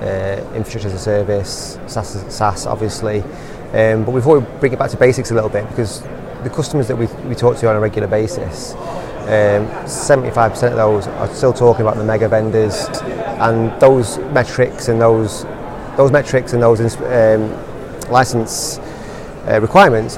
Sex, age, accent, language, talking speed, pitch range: male, 30-49, British, English, 165 wpm, 110-130 Hz